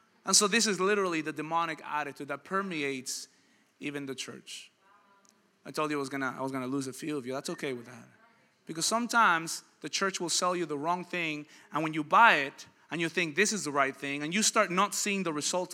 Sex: male